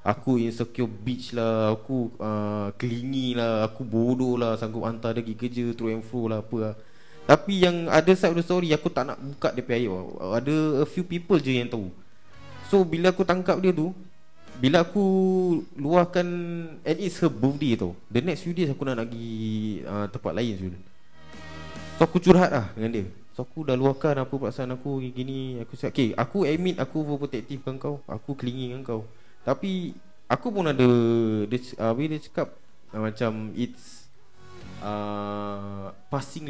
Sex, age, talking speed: male, 20-39, 175 wpm